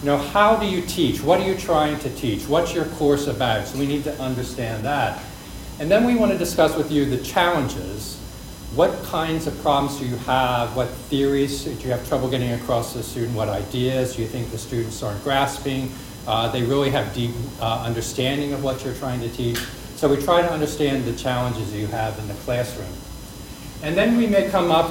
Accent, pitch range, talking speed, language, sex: American, 120-150 Hz, 215 wpm, English, male